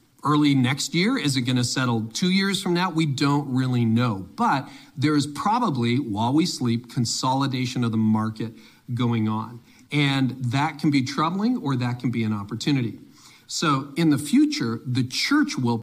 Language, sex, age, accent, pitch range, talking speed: English, male, 40-59, American, 120-145 Hz, 170 wpm